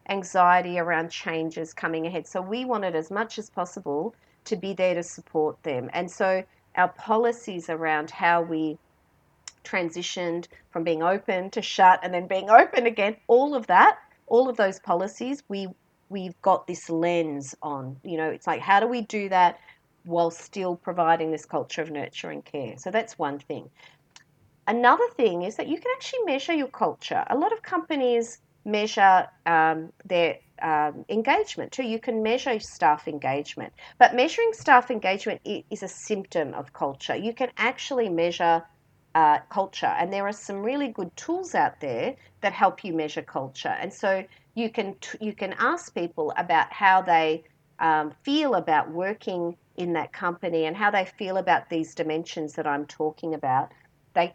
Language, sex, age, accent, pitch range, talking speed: English, female, 40-59, Australian, 165-215 Hz, 170 wpm